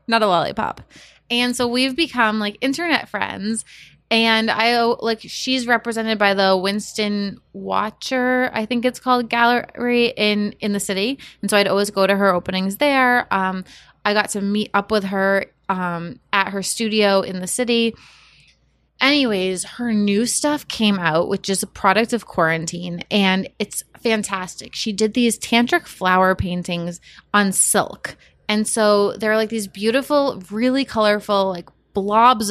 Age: 20-39